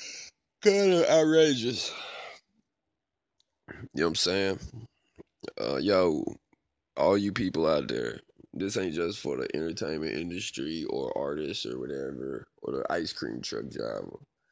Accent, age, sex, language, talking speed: American, 20-39, male, English, 130 wpm